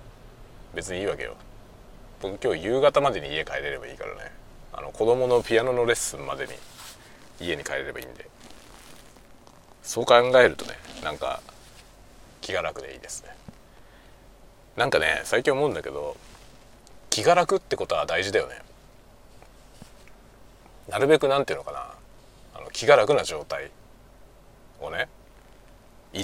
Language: Japanese